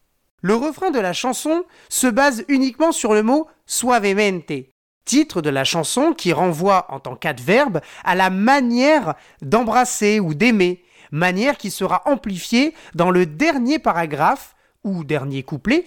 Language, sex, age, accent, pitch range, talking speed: French, male, 40-59, French, 175-260 Hz, 145 wpm